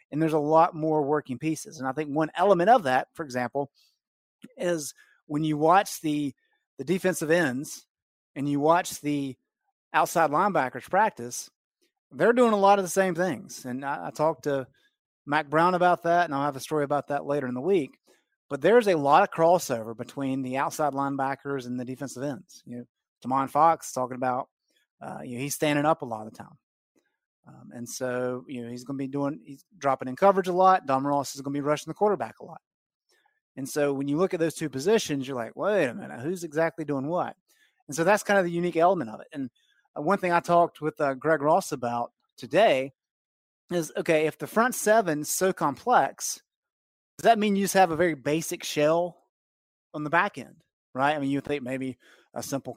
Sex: male